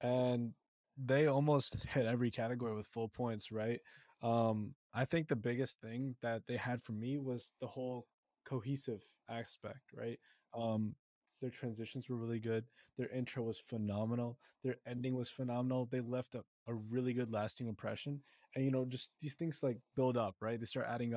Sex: male